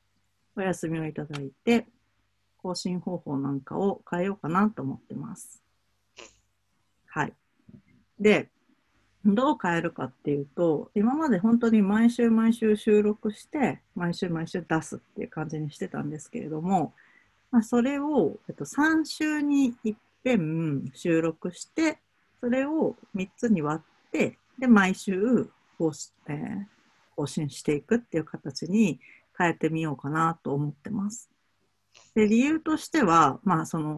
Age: 50-69